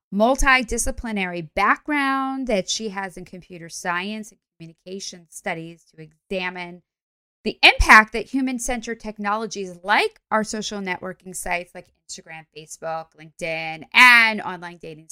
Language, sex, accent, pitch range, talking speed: English, female, American, 180-225 Hz, 120 wpm